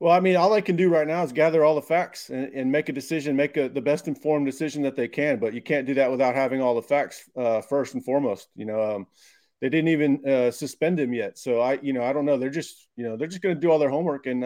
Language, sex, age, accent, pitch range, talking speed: English, male, 30-49, American, 125-150 Hz, 300 wpm